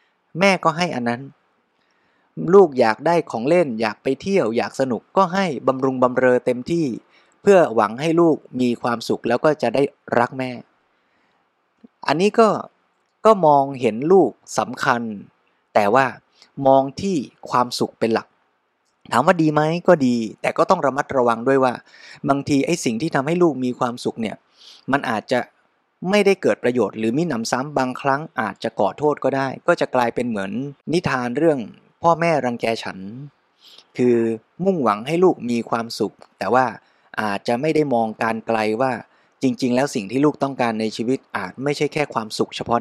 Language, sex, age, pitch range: Thai, male, 20-39, 120-165 Hz